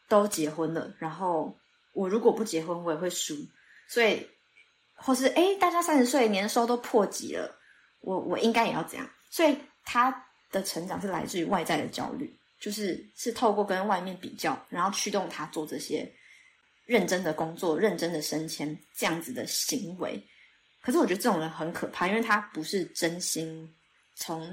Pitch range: 170-230 Hz